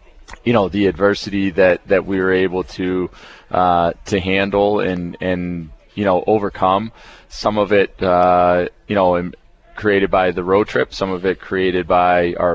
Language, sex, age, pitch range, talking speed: English, male, 20-39, 90-100 Hz, 165 wpm